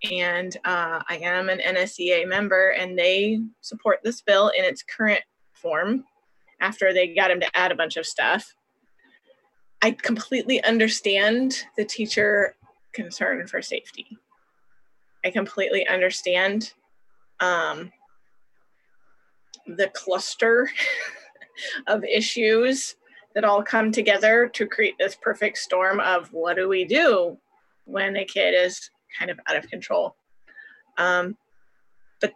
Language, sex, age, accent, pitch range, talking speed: English, female, 20-39, American, 185-245 Hz, 125 wpm